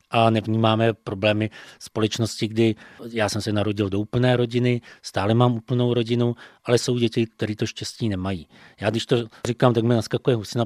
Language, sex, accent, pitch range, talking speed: Czech, male, native, 105-120 Hz, 175 wpm